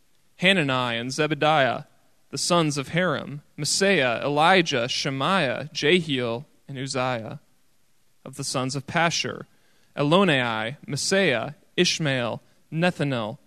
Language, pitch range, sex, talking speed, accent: English, 130-155 Hz, male, 100 wpm, American